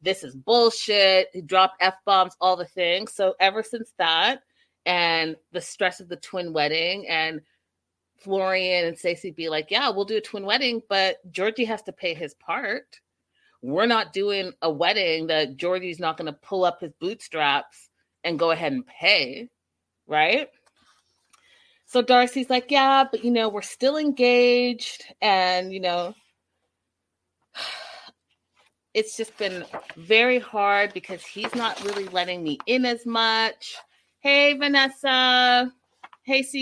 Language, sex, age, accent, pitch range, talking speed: English, female, 30-49, American, 175-250 Hz, 145 wpm